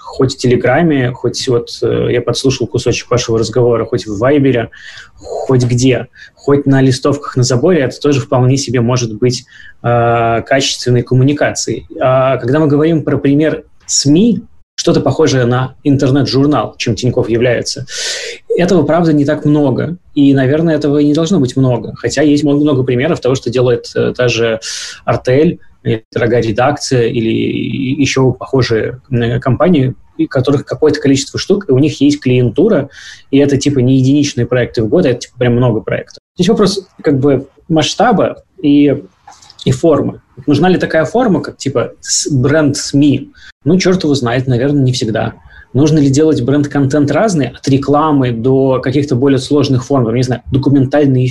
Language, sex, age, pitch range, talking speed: Russian, male, 20-39, 120-145 Hz, 155 wpm